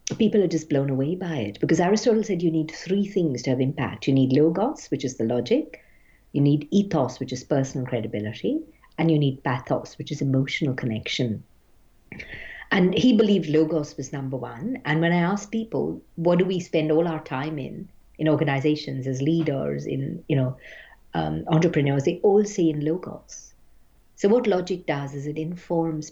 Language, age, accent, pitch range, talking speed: English, 50-69, Indian, 140-180 Hz, 185 wpm